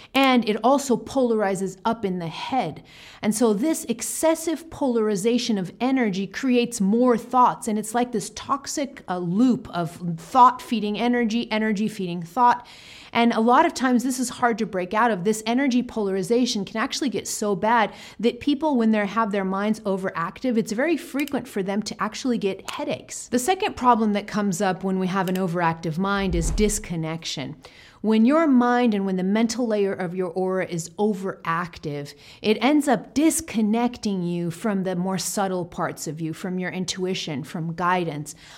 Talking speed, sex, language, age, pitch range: 175 wpm, female, English, 40-59, 190-245 Hz